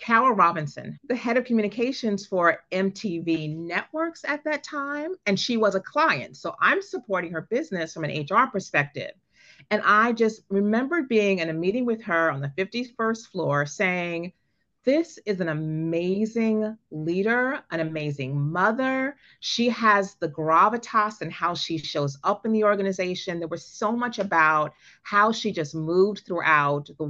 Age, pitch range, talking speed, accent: 40-59, 165-225 Hz, 160 wpm, American